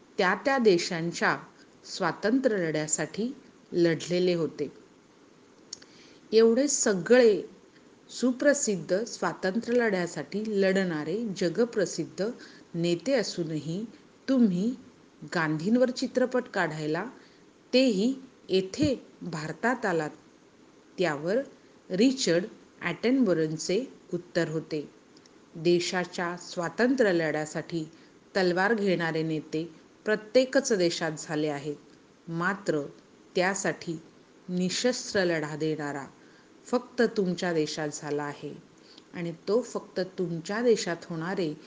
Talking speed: 55 wpm